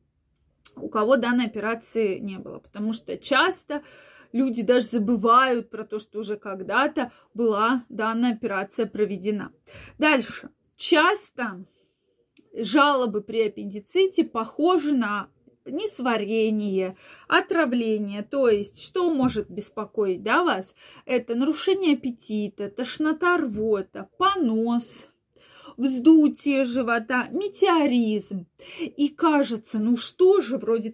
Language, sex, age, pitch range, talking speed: Russian, female, 20-39, 220-310 Hz, 100 wpm